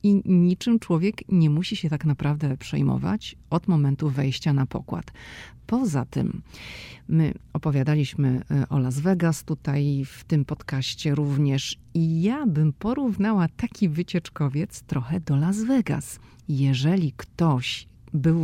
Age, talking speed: 40-59, 125 wpm